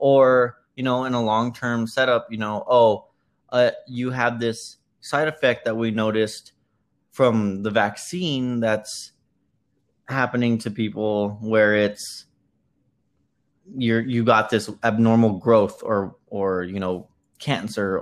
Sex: male